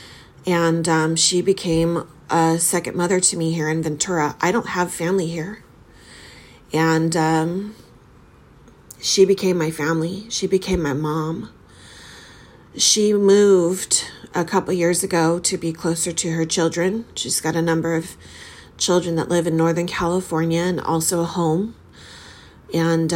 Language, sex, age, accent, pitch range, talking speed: English, female, 30-49, American, 160-180 Hz, 145 wpm